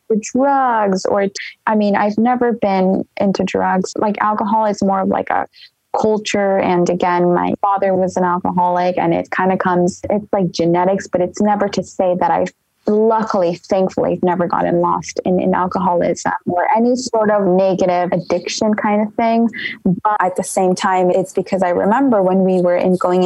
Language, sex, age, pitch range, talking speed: English, female, 20-39, 180-220 Hz, 185 wpm